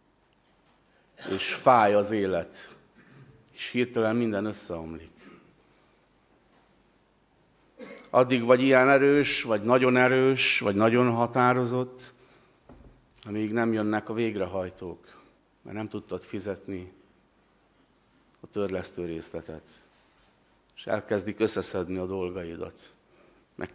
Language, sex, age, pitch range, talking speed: Hungarian, male, 50-69, 95-125 Hz, 90 wpm